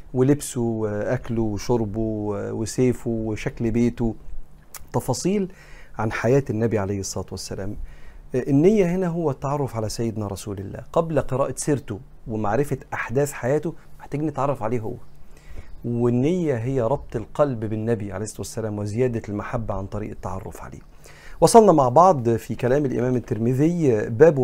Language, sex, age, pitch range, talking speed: Arabic, male, 40-59, 110-140 Hz, 130 wpm